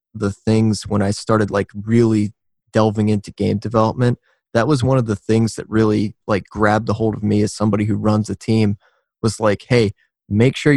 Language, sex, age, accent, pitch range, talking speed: English, male, 20-39, American, 105-115 Hz, 200 wpm